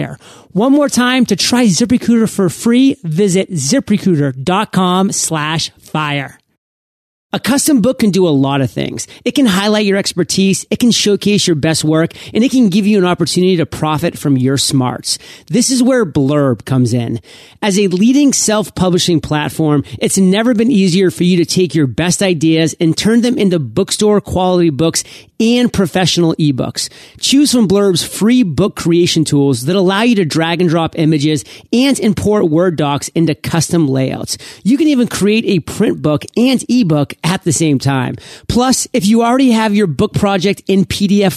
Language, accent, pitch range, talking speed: English, American, 155-210 Hz, 175 wpm